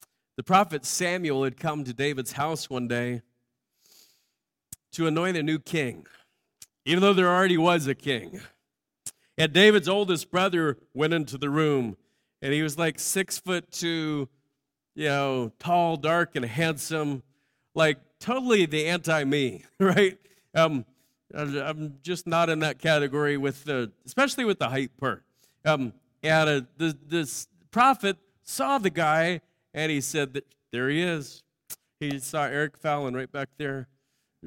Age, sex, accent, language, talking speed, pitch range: 40-59, male, American, English, 150 wpm, 135-170 Hz